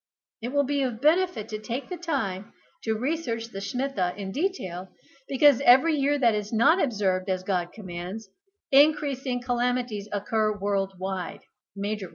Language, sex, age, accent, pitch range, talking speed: English, female, 50-69, American, 200-260 Hz, 150 wpm